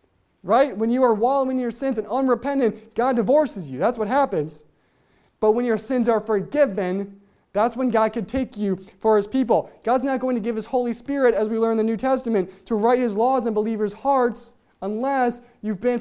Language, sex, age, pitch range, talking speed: English, male, 20-39, 210-255 Hz, 210 wpm